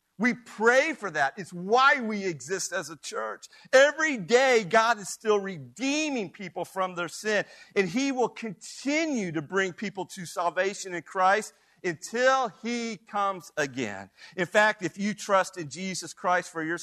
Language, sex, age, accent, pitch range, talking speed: English, male, 50-69, American, 140-205 Hz, 165 wpm